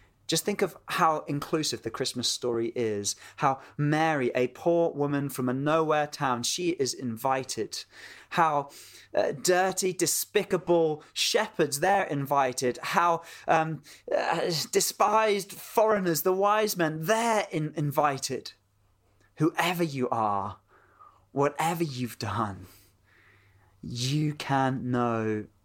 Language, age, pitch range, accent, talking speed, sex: English, 20-39, 110-155 Hz, British, 110 wpm, male